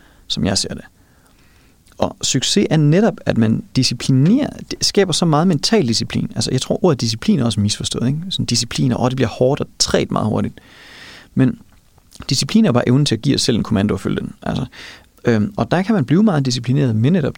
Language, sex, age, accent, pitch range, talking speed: Danish, male, 30-49, native, 120-155 Hz, 220 wpm